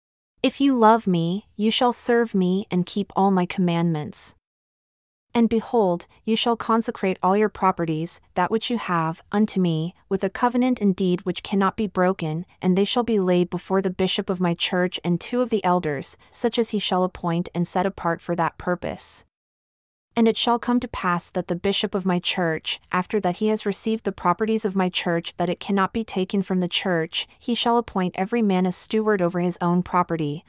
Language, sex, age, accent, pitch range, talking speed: English, female, 30-49, American, 175-210 Hz, 205 wpm